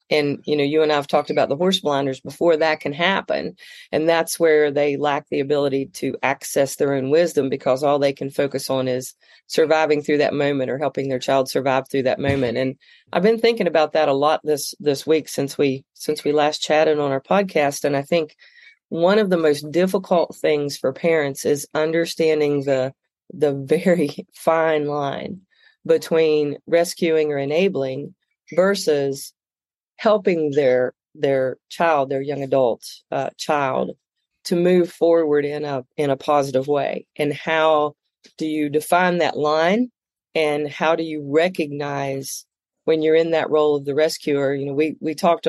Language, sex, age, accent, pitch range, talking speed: English, female, 40-59, American, 140-160 Hz, 175 wpm